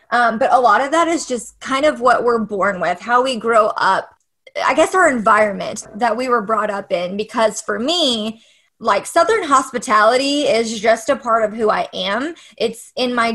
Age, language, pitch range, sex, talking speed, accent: 20-39, English, 215-275 Hz, female, 200 wpm, American